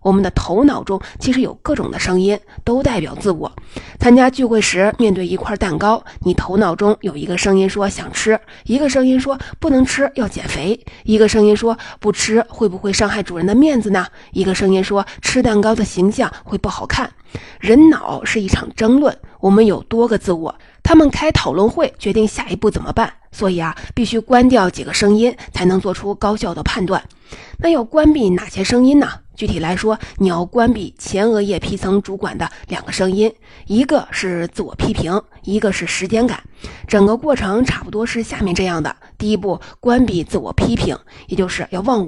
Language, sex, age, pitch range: Chinese, female, 20-39, 190-240 Hz